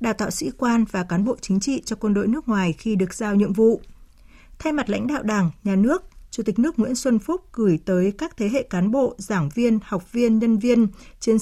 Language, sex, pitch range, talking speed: Vietnamese, female, 200-255 Hz, 240 wpm